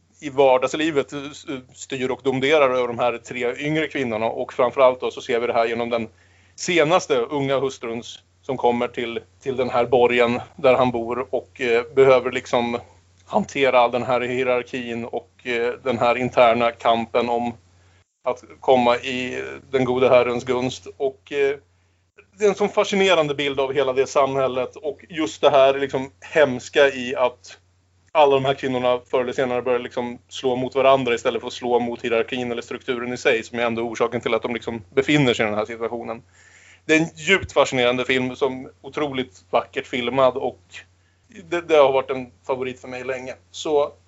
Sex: male